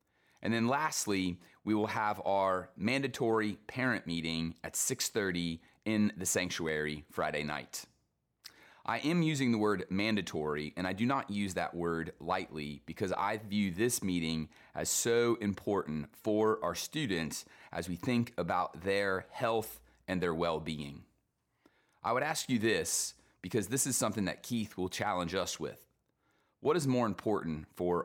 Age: 30-49